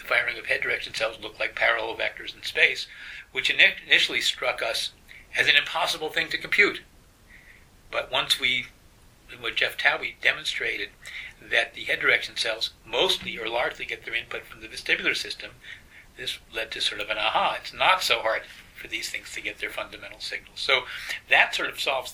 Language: English